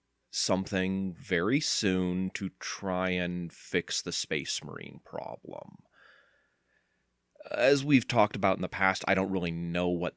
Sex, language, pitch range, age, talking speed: male, English, 85-100 Hz, 30-49, 135 wpm